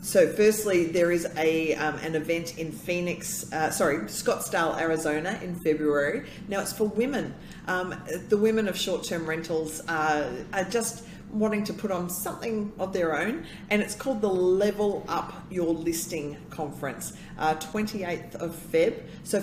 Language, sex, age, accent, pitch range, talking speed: English, female, 40-59, Australian, 165-205 Hz, 165 wpm